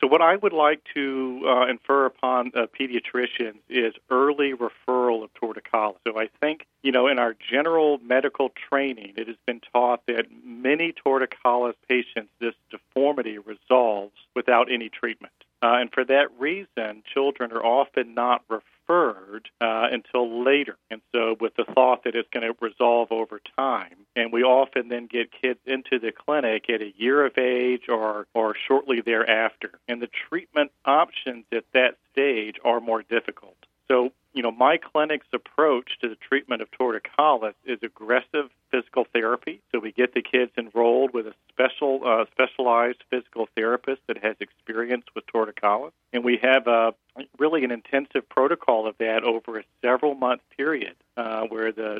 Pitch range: 115-130 Hz